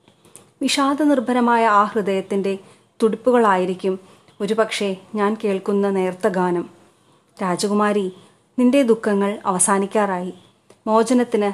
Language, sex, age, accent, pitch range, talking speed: Malayalam, female, 30-49, native, 190-225 Hz, 75 wpm